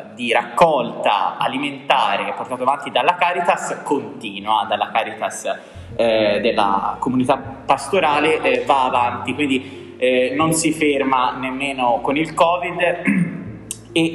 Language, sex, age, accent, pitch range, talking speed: Italian, male, 20-39, native, 115-175 Hz, 115 wpm